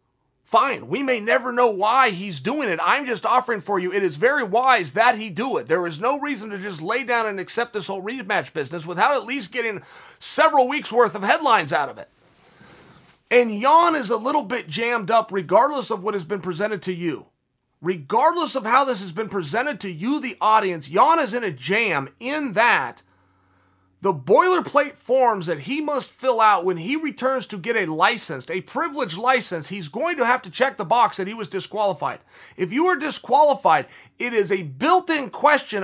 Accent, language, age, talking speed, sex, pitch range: American, English, 40-59, 205 wpm, male, 190-275 Hz